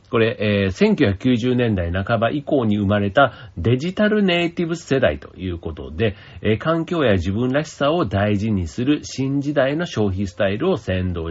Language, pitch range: Japanese, 90-125 Hz